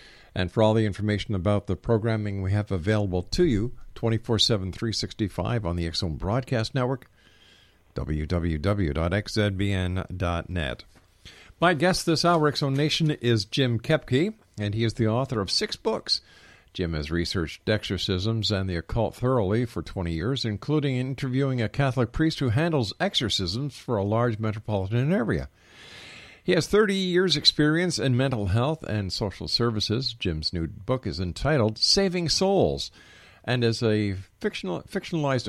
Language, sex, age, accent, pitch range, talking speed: English, male, 50-69, American, 95-130 Hz, 140 wpm